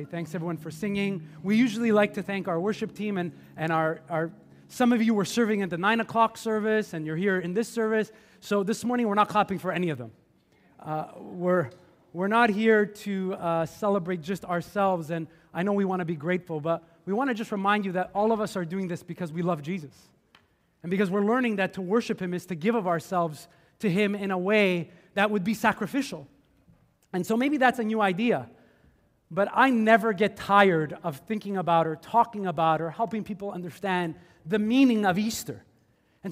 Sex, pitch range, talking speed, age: male, 175-220 Hz, 210 wpm, 30-49